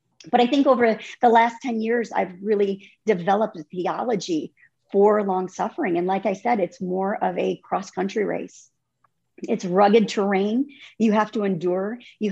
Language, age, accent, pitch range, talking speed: English, 40-59, American, 190-230 Hz, 160 wpm